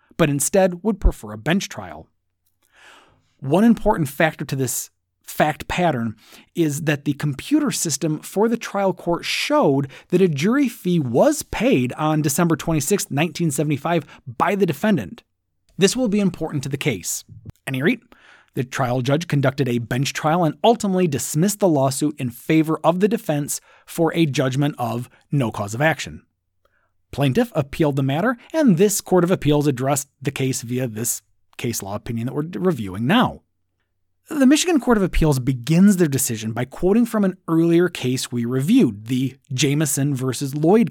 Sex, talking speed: male, 165 wpm